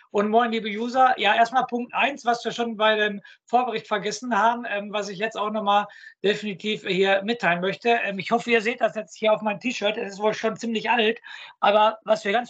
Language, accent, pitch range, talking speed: German, German, 195-235 Hz, 225 wpm